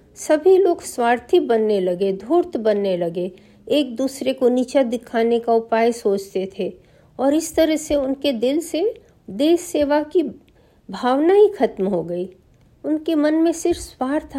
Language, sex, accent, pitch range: Hindi, female, native, 210-275 Hz